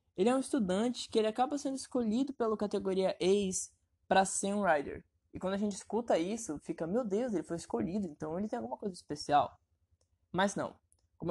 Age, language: 20-39, Portuguese